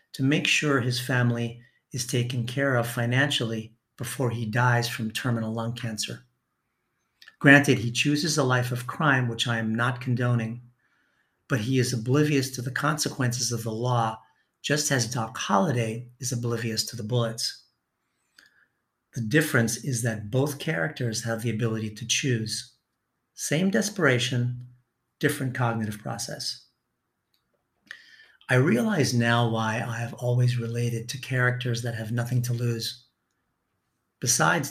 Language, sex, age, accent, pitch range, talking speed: English, male, 50-69, American, 115-135 Hz, 140 wpm